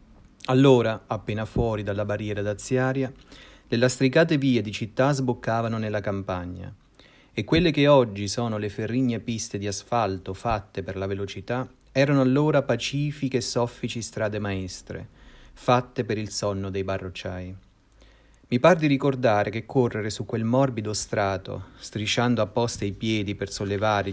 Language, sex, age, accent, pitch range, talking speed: Italian, male, 30-49, native, 100-125 Hz, 140 wpm